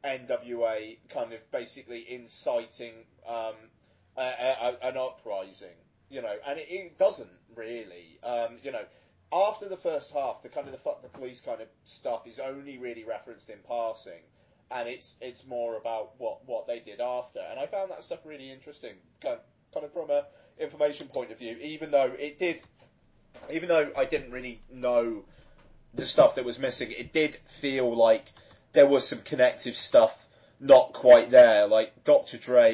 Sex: male